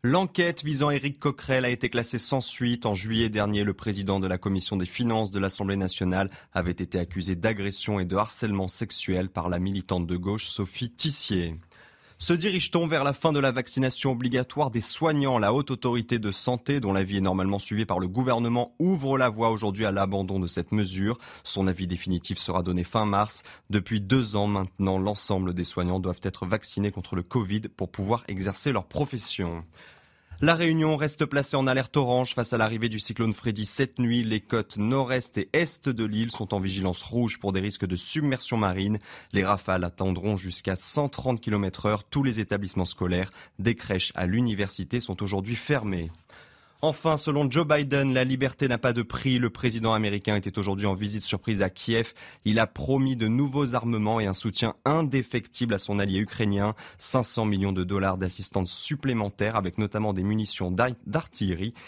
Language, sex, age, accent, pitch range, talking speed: French, male, 20-39, French, 95-125 Hz, 185 wpm